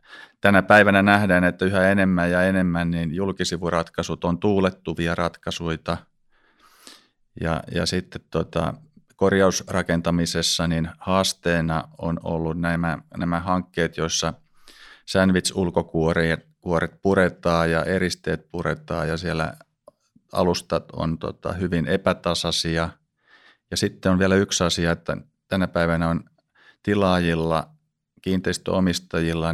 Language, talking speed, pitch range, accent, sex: Finnish, 100 wpm, 80-95 Hz, native, male